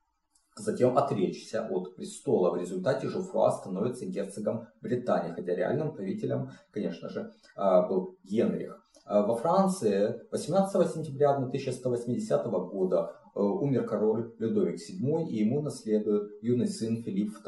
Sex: male